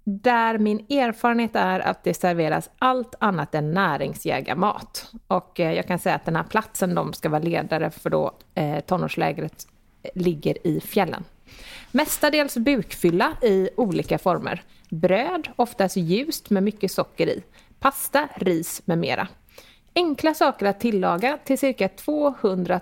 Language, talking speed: English, 135 wpm